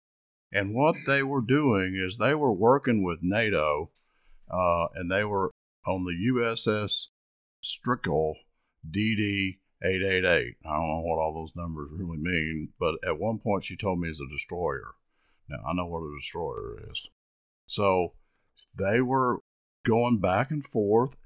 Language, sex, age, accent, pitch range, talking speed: English, male, 50-69, American, 85-105 Hz, 150 wpm